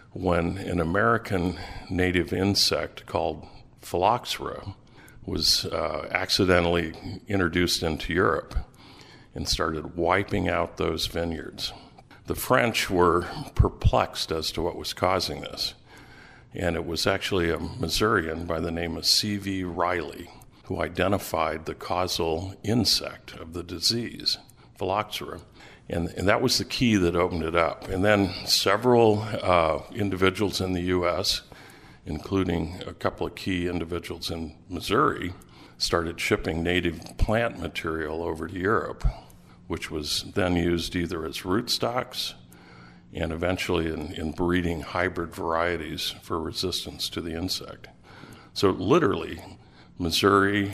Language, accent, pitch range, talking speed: English, American, 85-95 Hz, 125 wpm